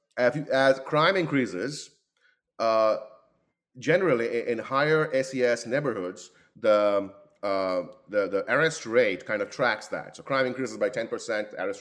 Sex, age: male, 30-49